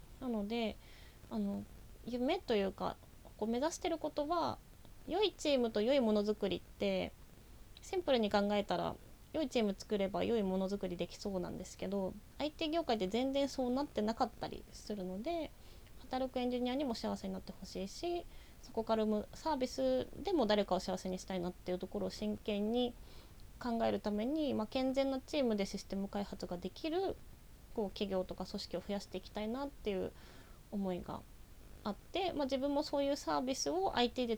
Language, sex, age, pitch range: Japanese, female, 20-39, 195-275 Hz